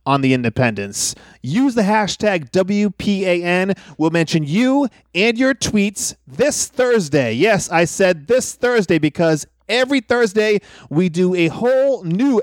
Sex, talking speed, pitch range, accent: male, 150 wpm, 145-215 Hz, American